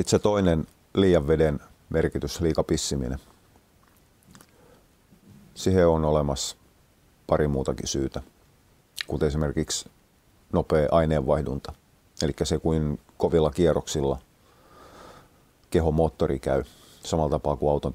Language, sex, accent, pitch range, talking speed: Finnish, male, native, 70-80 Hz, 95 wpm